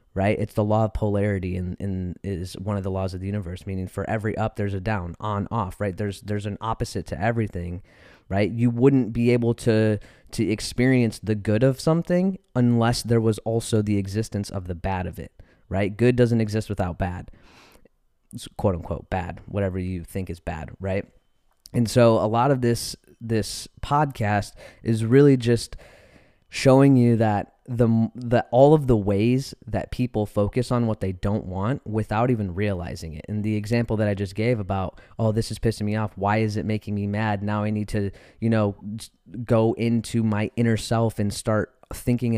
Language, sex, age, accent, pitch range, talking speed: English, male, 20-39, American, 100-115 Hz, 195 wpm